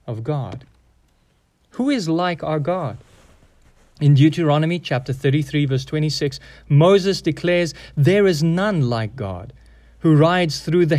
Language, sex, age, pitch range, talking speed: English, male, 30-49, 110-150 Hz, 130 wpm